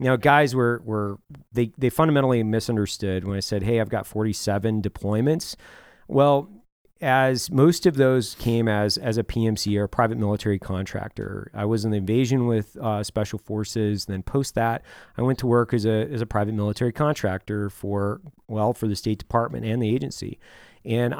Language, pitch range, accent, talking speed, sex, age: English, 105-130 Hz, American, 180 wpm, male, 30-49